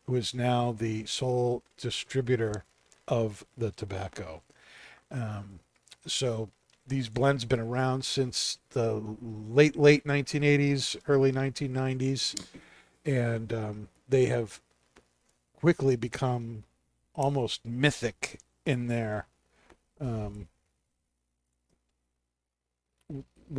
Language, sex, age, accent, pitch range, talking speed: English, male, 50-69, American, 105-130 Hz, 85 wpm